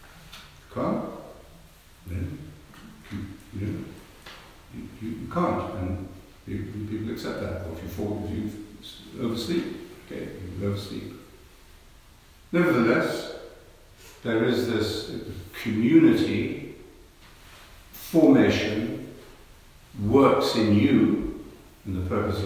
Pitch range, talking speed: 95-110 Hz, 85 wpm